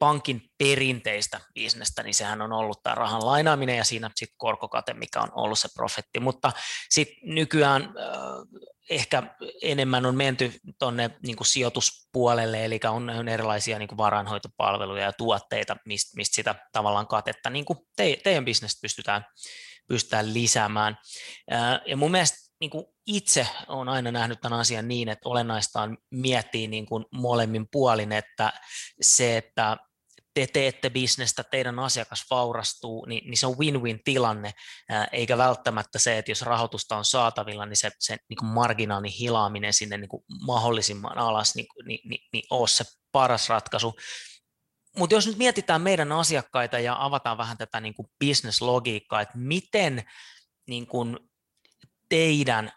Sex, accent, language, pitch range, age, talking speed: male, native, Finnish, 110-130 Hz, 20-39, 135 wpm